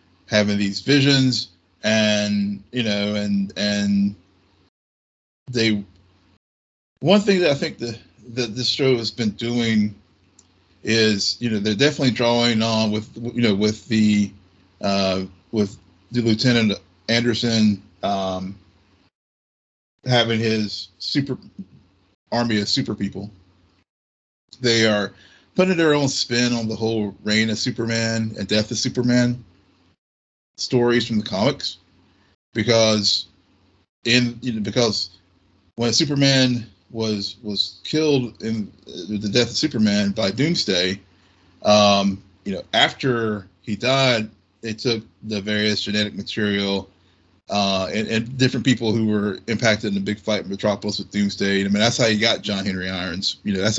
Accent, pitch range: American, 95-115 Hz